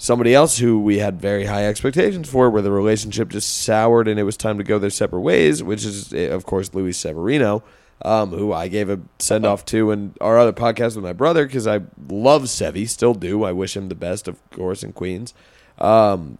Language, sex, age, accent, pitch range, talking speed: English, male, 20-39, American, 100-140 Hz, 215 wpm